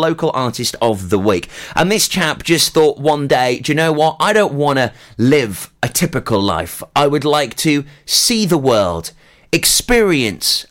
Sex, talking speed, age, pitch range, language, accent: male, 180 wpm, 30-49, 120-160 Hz, English, British